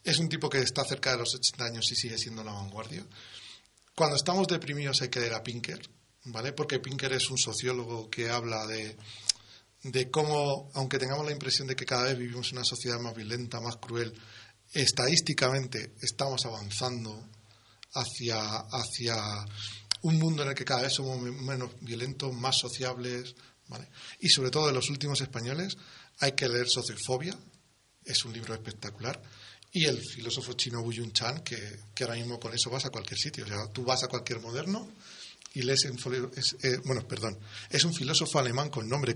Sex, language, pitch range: male, Spanish, 115-140 Hz